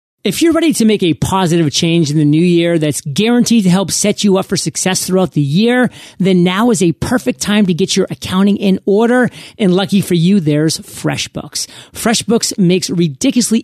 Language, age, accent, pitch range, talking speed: English, 30-49, American, 165-210 Hz, 200 wpm